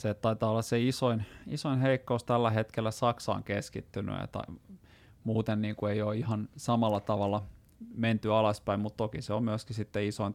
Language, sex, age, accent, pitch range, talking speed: Finnish, male, 30-49, native, 100-120 Hz, 175 wpm